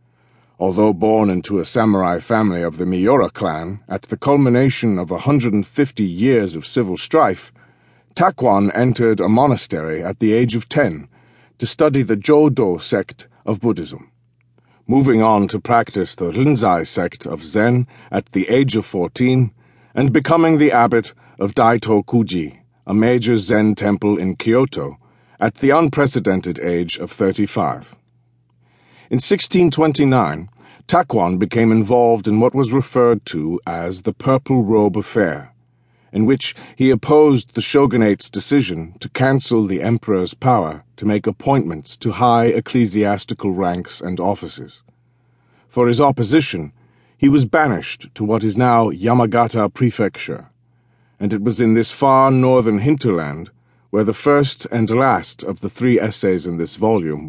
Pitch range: 100-125 Hz